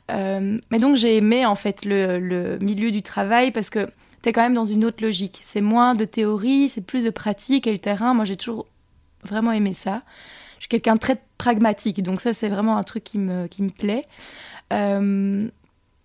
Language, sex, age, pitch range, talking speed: French, female, 20-39, 205-245 Hz, 210 wpm